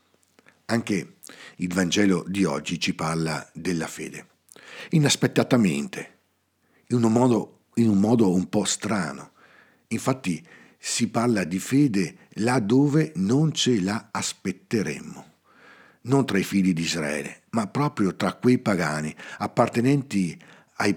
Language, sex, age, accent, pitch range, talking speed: Italian, male, 50-69, native, 90-125 Hz, 120 wpm